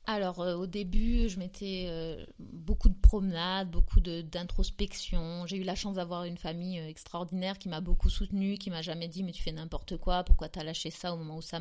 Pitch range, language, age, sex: 175-210 Hz, French, 30-49, female